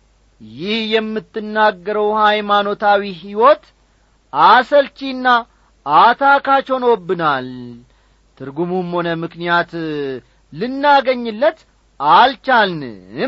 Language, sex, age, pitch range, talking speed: Amharic, male, 40-59, 145-230 Hz, 50 wpm